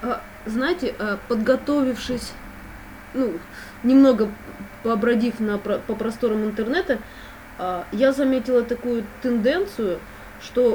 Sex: female